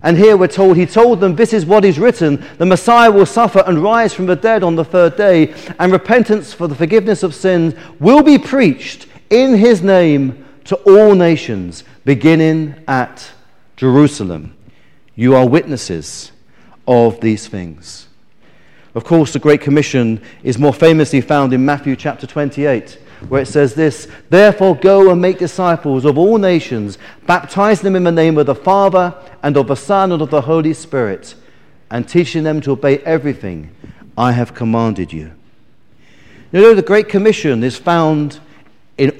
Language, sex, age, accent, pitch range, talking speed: English, male, 40-59, British, 130-185 Hz, 170 wpm